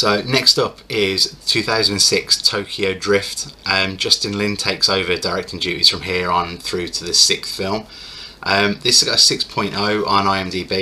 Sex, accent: male, British